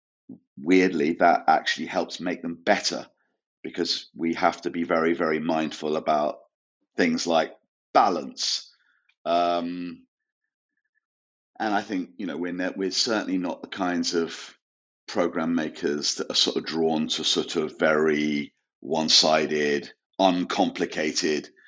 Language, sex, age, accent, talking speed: English, male, 40-59, British, 125 wpm